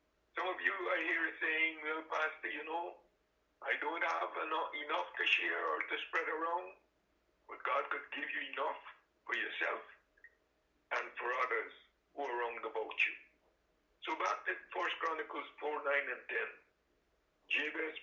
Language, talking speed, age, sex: English, 155 wpm, 60-79, male